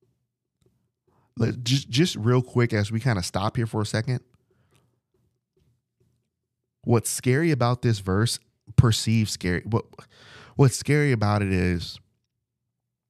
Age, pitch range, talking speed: 20-39, 100-125 Hz, 120 wpm